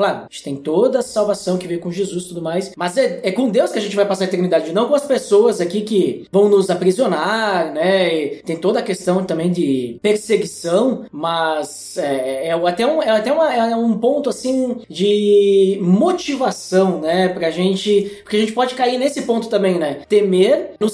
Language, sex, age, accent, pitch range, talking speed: Portuguese, male, 20-39, Brazilian, 185-250 Hz, 205 wpm